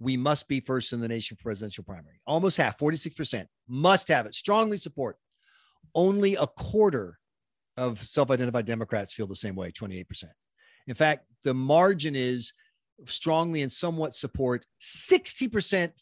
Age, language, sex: 40-59, English, male